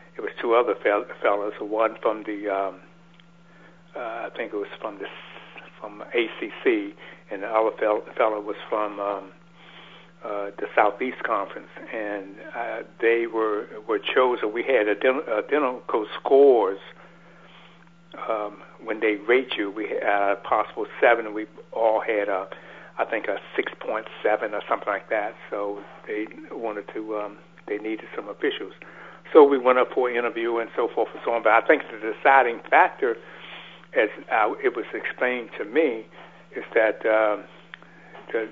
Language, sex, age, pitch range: English, male, 60-79, 110-175 Hz